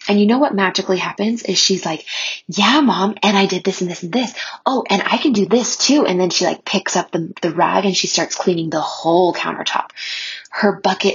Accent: American